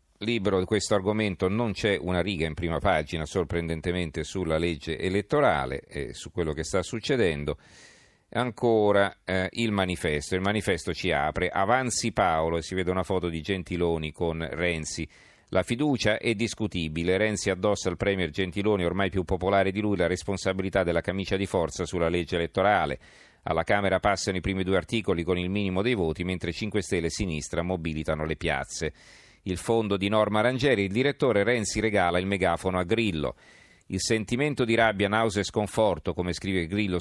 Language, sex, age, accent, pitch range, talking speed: Italian, male, 40-59, native, 85-105 Hz, 170 wpm